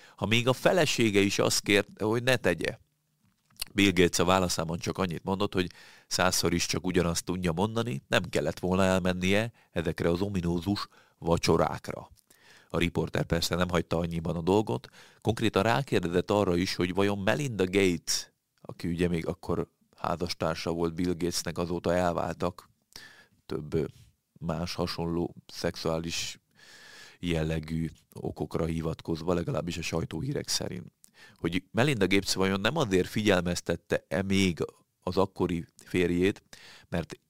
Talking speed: 130 wpm